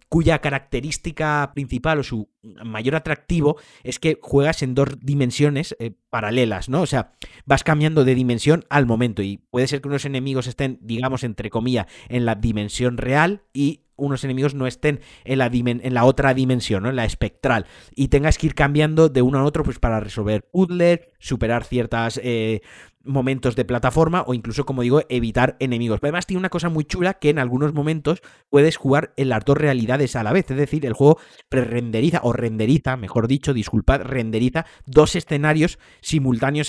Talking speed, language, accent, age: 185 wpm, Spanish, Spanish, 30-49